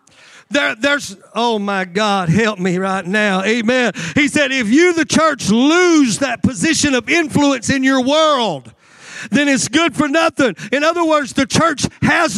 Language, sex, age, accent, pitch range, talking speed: English, male, 50-69, American, 255-315 Hz, 165 wpm